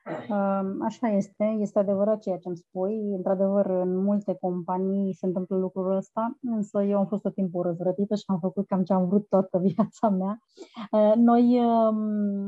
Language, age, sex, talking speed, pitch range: Romanian, 30-49, female, 165 wpm, 190-215 Hz